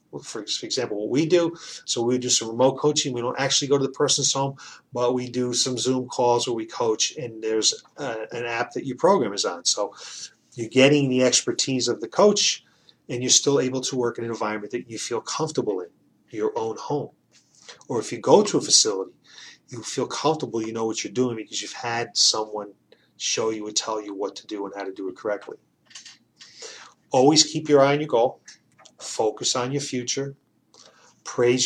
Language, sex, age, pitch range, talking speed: English, male, 30-49, 120-155 Hz, 205 wpm